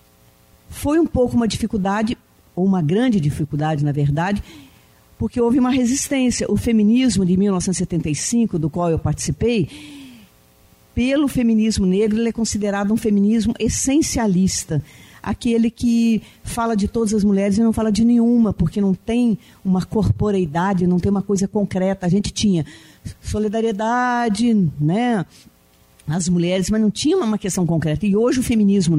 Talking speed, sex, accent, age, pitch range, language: 145 wpm, female, Brazilian, 50-69, 170-230 Hz, Portuguese